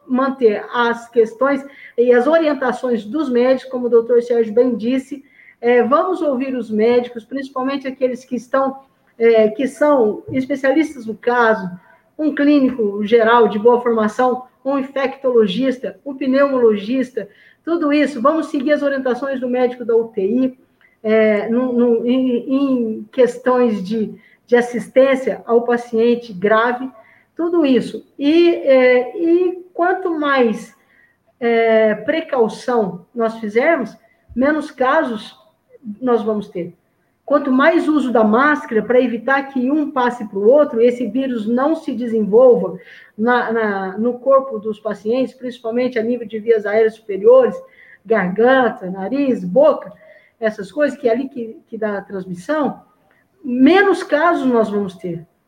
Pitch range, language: 225-275 Hz, Portuguese